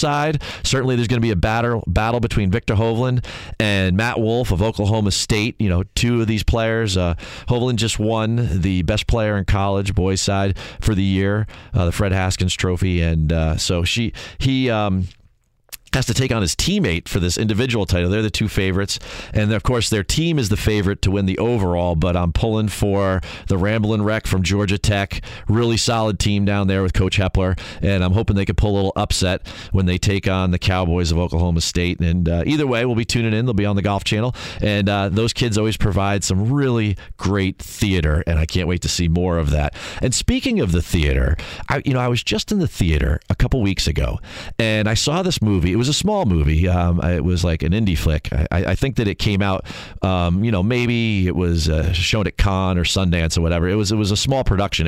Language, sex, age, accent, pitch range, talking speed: English, male, 40-59, American, 90-110 Hz, 225 wpm